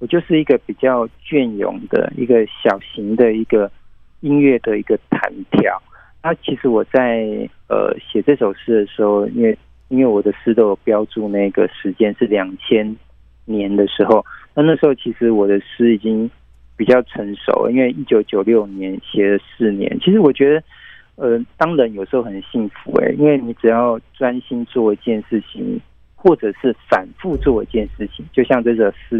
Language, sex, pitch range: Chinese, male, 105-130 Hz